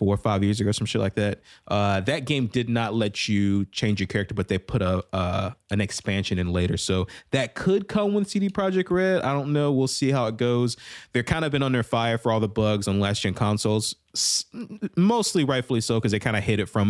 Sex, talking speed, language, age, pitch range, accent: male, 245 wpm, English, 20-39, 95-120 Hz, American